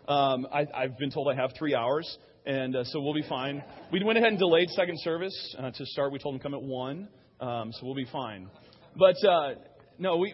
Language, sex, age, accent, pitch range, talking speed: English, male, 30-49, American, 125-155 Hz, 230 wpm